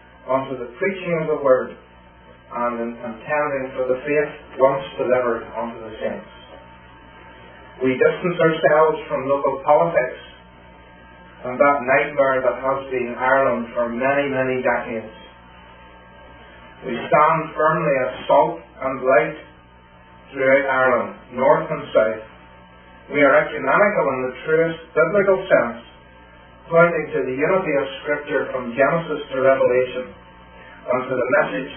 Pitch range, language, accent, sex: 110-150 Hz, English, American, male